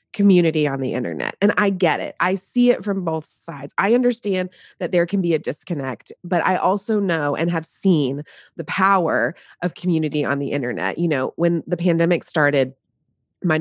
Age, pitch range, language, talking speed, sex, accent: 20-39, 150-185 Hz, English, 190 wpm, female, American